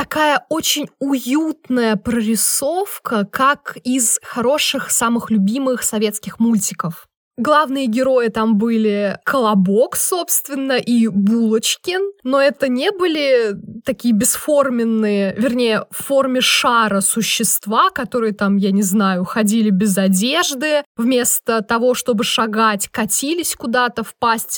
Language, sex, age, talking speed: Russian, female, 20-39, 110 wpm